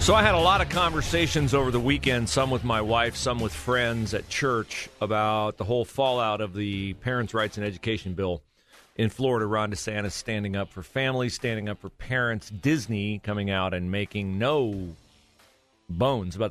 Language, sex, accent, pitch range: English, male, American, 95-120 Hz